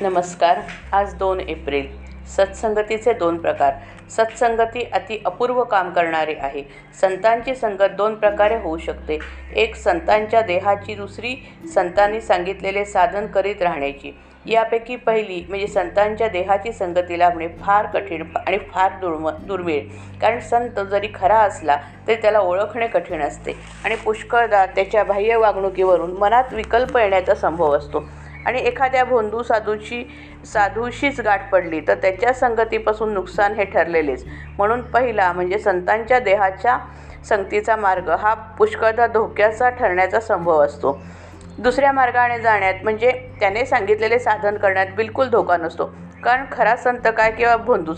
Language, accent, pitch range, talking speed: Marathi, native, 180-230 Hz, 130 wpm